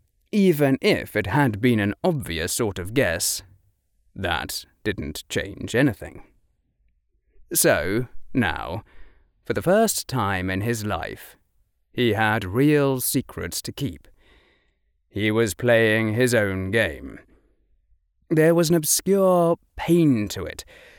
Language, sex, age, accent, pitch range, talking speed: English, male, 30-49, British, 95-140 Hz, 120 wpm